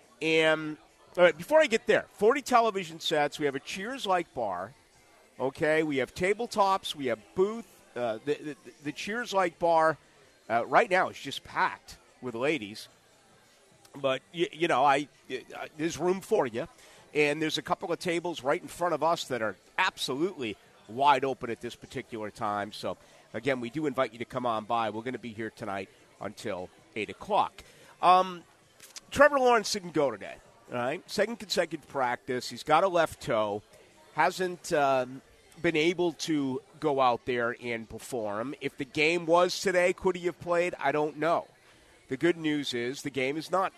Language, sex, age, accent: English, male, 50-69, American